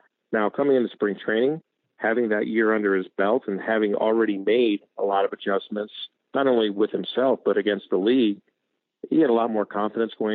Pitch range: 100-115 Hz